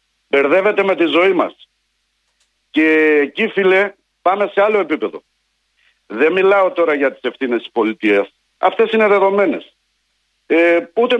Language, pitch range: Greek, 145-200 Hz